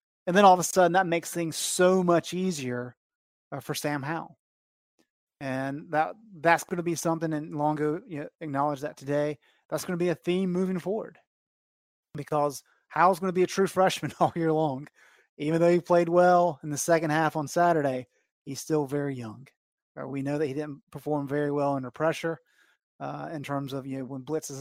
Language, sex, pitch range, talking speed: English, male, 145-180 Hz, 200 wpm